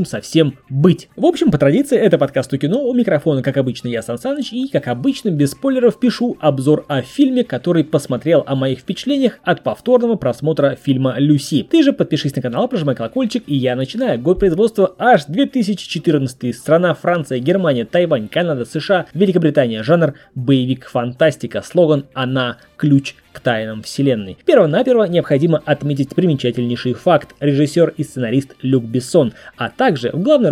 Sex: male